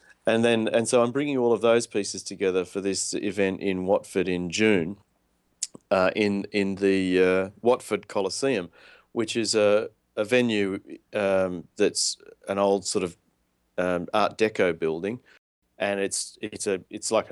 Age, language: 40-59, English